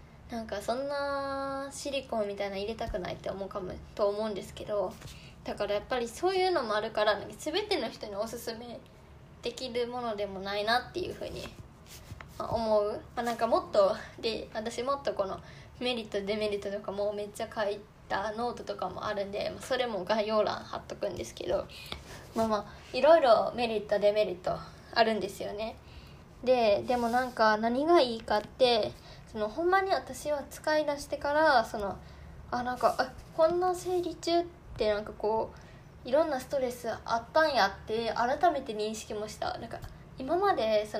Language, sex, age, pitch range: Japanese, female, 10-29, 215-290 Hz